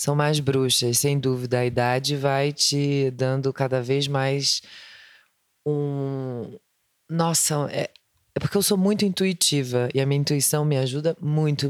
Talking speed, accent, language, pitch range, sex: 150 wpm, Brazilian, Portuguese, 135-170 Hz, female